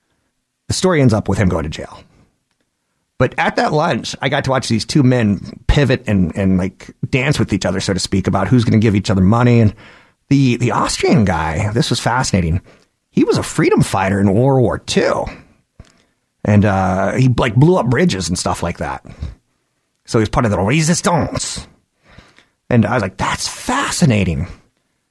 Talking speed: 190 wpm